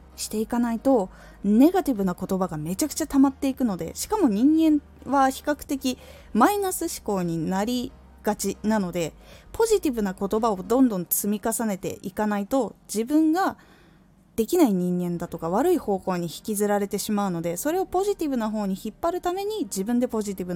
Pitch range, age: 185-275 Hz, 20-39